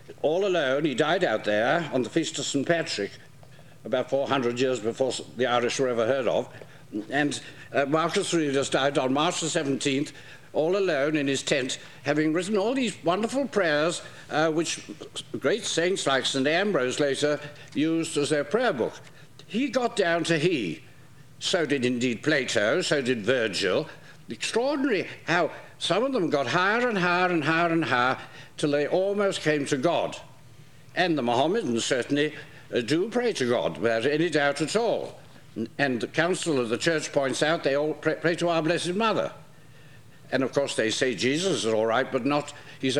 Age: 60-79